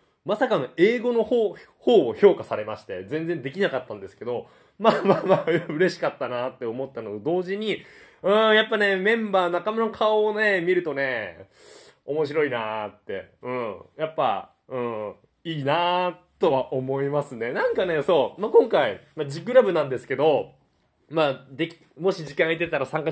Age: 20-39